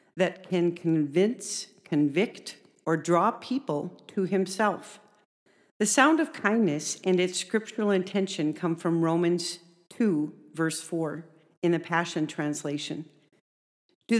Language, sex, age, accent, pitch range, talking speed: English, female, 50-69, American, 170-205 Hz, 120 wpm